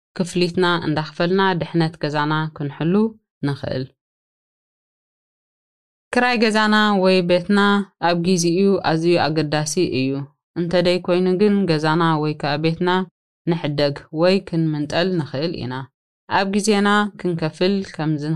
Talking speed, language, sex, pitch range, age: 105 wpm, Amharic, female, 160-190 Hz, 20-39